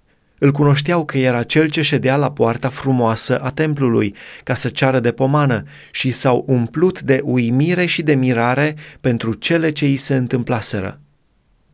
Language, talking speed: Romanian, 160 wpm